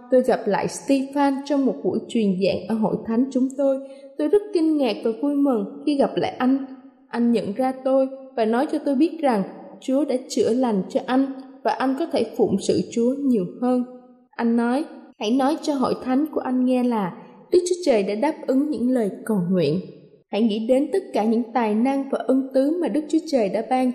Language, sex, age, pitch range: Thai, female, 20-39, 220-280 Hz